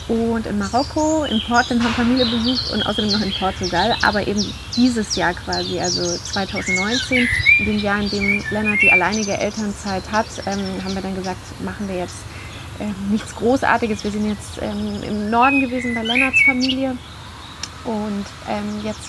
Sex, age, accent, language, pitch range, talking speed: female, 30-49, German, German, 205-255 Hz, 170 wpm